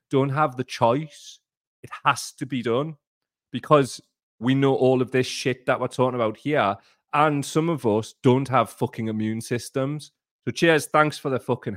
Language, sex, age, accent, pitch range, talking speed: English, male, 30-49, British, 110-145 Hz, 185 wpm